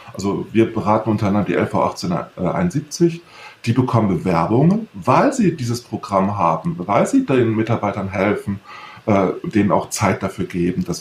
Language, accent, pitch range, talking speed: English, German, 110-130 Hz, 155 wpm